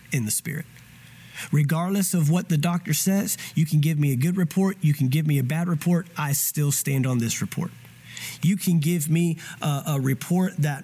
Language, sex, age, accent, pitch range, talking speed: English, male, 30-49, American, 135-165 Hz, 205 wpm